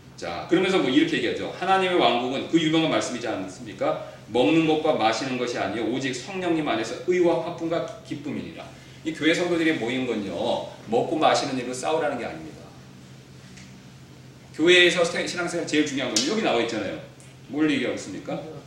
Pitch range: 160-230 Hz